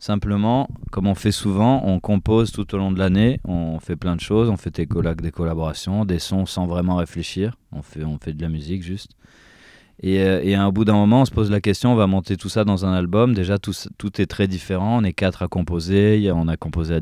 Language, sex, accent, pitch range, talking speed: French, male, French, 85-100 Hz, 240 wpm